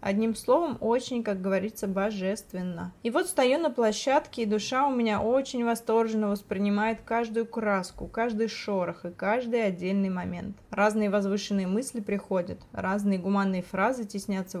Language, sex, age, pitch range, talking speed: Russian, female, 20-39, 195-230 Hz, 140 wpm